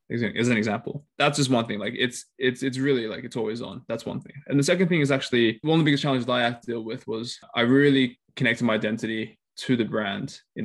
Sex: male